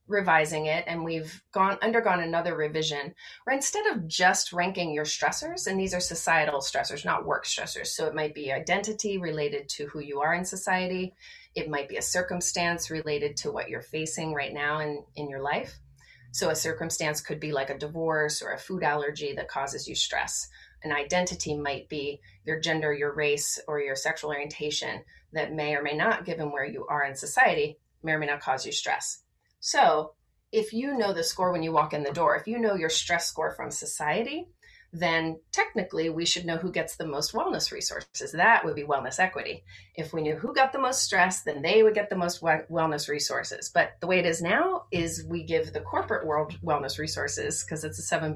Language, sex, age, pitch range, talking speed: English, female, 30-49, 145-180 Hz, 205 wpm